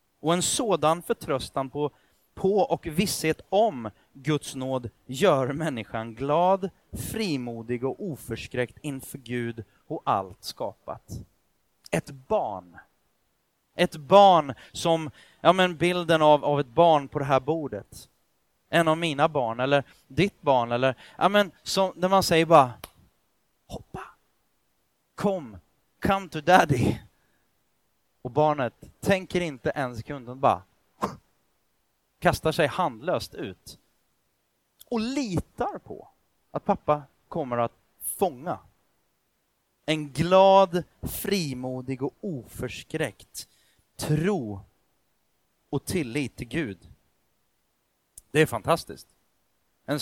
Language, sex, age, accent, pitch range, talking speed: Swedish, male, 30-49, native, 130-170 Hz, 110 wpm